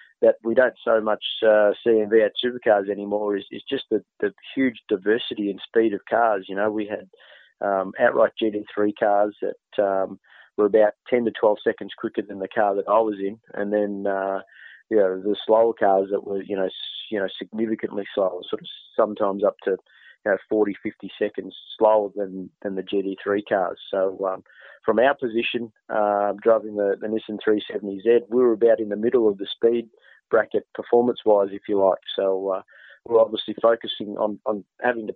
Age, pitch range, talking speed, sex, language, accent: 30-49, 100-115 Hz, 200 wpm, male, English, Australian